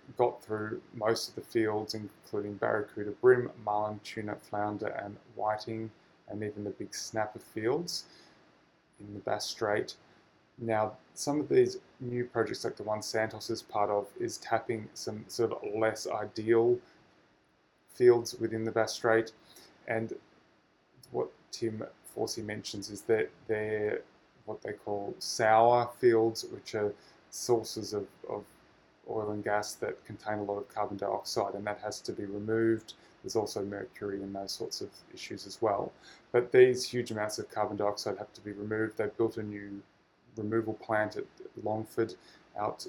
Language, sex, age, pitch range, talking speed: English, male, 20-39, 105-115 Hz, 160 wpm